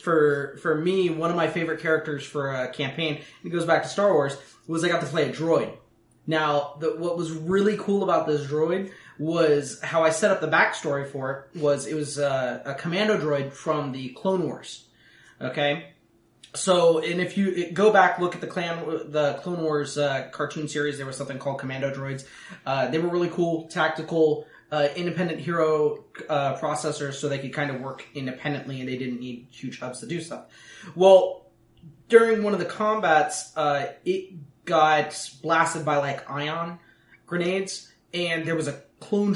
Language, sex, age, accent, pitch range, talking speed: English, male, 20-39, American, 140-175 Hz, 185 wpm